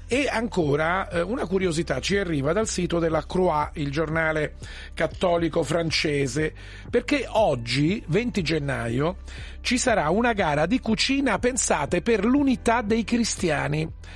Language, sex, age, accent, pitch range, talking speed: Italian, male, 40-59, native, 155-220 Hz, 125 wpm